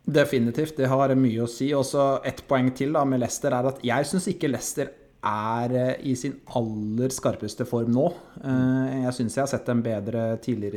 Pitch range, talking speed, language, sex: 115-130 Hz, 210 wpm, English, male